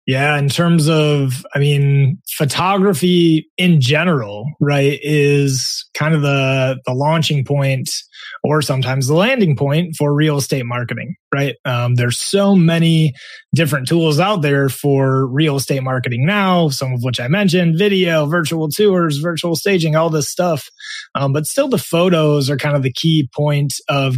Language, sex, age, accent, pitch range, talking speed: English, male, 30-49, American, 135-170 Hz, 160 wpm